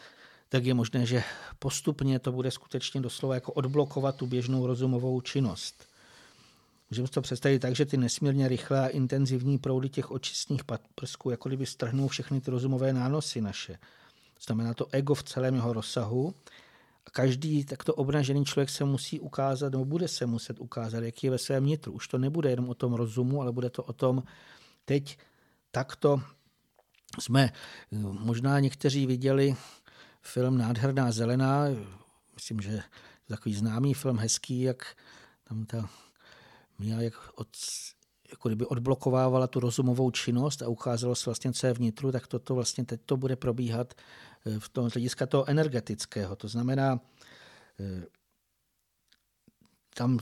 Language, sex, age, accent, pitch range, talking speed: Czech, male, 50-69, native, 120-135 Hz, 145 wpm